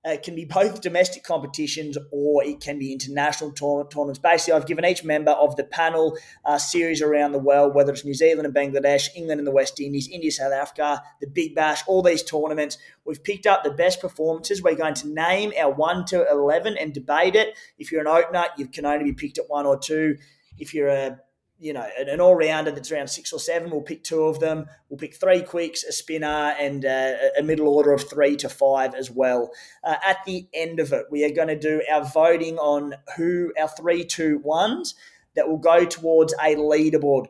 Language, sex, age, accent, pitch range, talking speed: English, male, 20-39, Australian, 145-170 Hz, 215 wpm